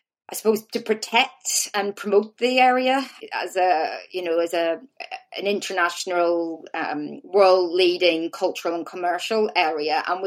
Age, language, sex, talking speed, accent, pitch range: 30-49, English, female, 140 wpm, British, 170-205 Hz